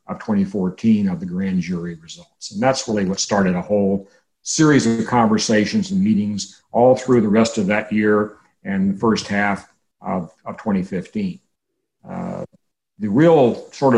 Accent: American